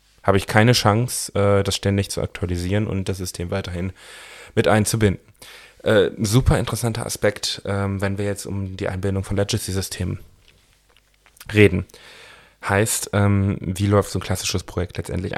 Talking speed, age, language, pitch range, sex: 135 wpm, 10-29, German, 95-110 Hz, male